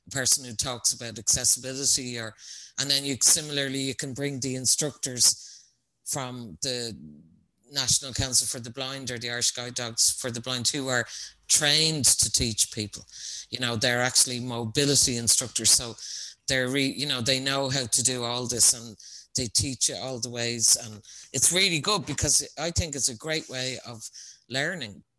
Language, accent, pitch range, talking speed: English, Irish, 120-140 Hz, 175 wpm